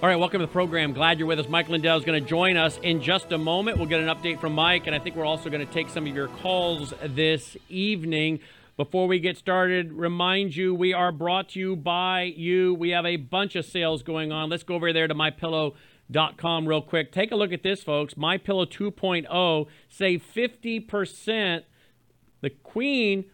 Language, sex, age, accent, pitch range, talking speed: English, male, 50-69, American, 155-180 Hz, 205 wpm